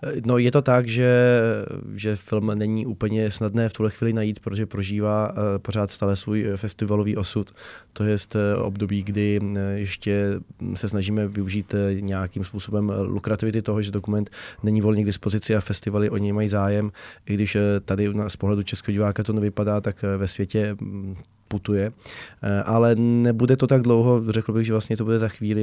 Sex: male